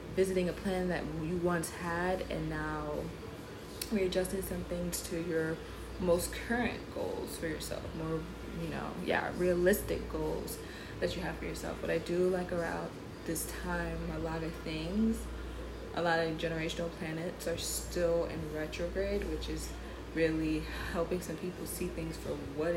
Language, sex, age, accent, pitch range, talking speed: English, female, 20-39, American, 150-180 Hz, 160 wpm